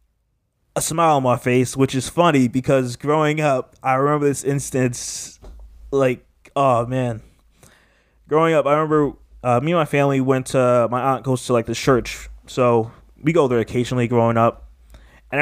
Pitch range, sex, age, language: 125-170 Hz, male, 20-39, English